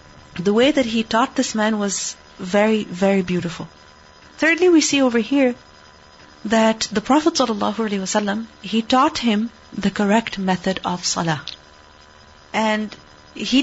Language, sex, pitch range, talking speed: English, female, 185-245 Hz, 130 wpm